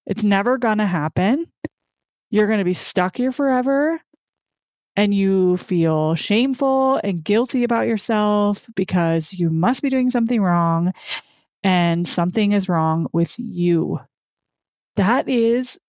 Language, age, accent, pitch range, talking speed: English, 30-49, American, 185-255 Hz, 130 wpm